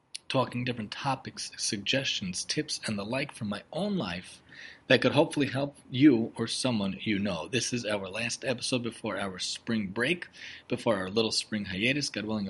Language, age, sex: English, 30-49, male